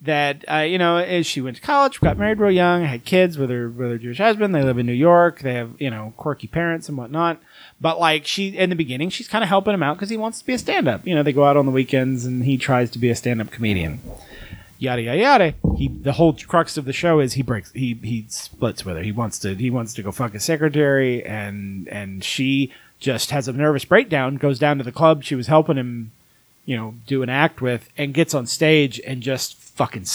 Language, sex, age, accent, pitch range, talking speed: English, male, 30-49, American, 120-160 Hz, 255 wpm